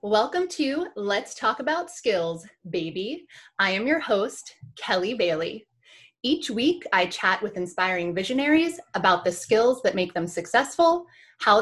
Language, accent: English, American